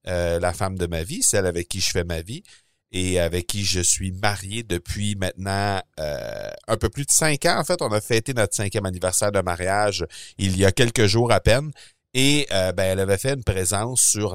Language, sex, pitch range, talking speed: French, male, 90-120 Hz, 225 wpm